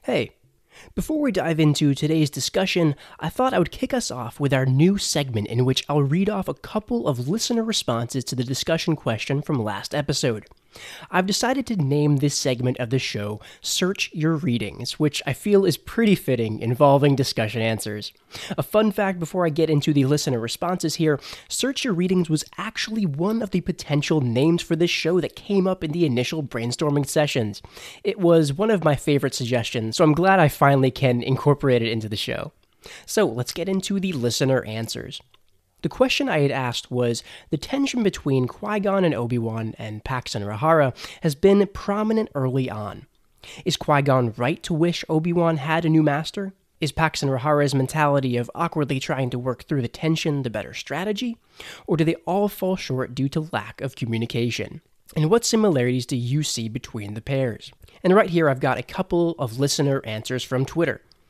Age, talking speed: 20-39, 190 wpm